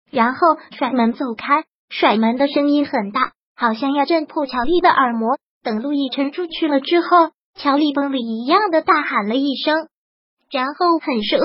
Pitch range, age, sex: 265-330 Hz, 20-39, male